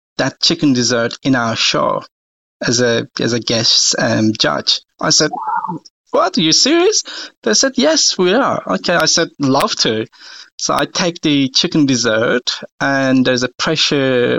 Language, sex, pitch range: English, male, 120-150 Hz